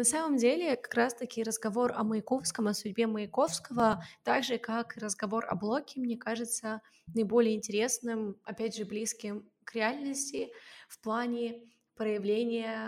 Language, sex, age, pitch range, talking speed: Russian, female, 20-39, 215-255 Hz, 135 wpm